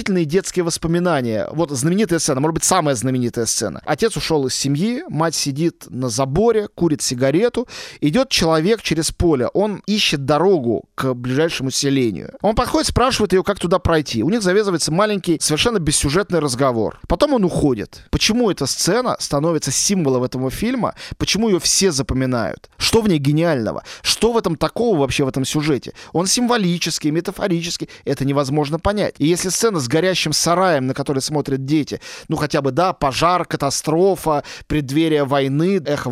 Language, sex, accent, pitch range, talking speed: Russian, male, native, 135-180 Hz, 160 wpm